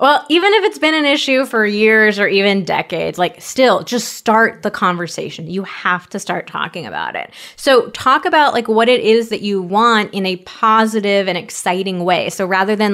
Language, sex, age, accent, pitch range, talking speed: English, female, 20-39, American, 185-235 Hz, 205 wpm